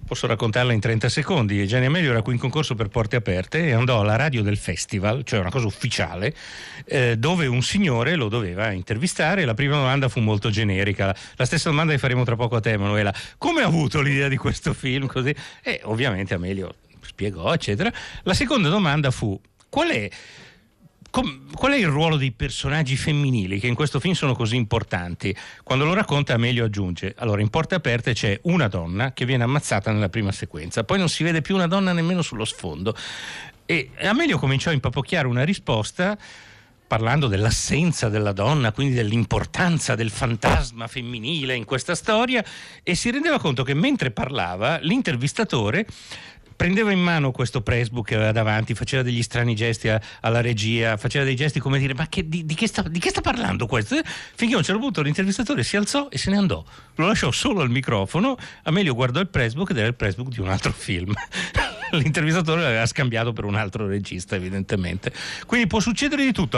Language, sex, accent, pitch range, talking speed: Italian, male, native, 110-160 Hz, 185 wpm